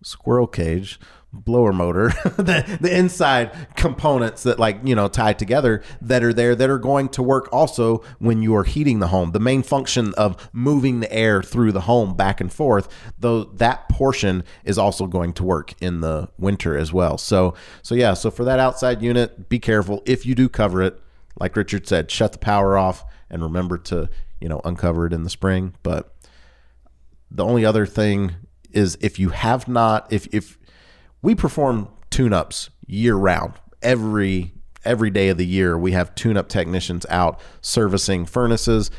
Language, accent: English, American